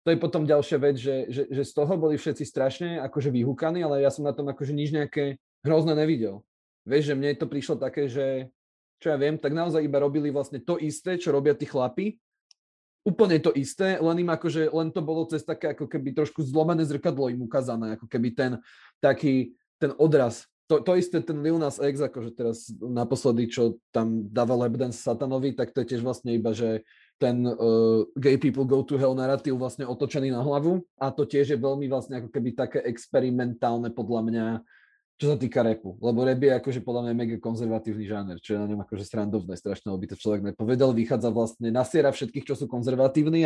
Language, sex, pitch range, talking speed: Slovak, male, 120-155 Hz, 205 wpm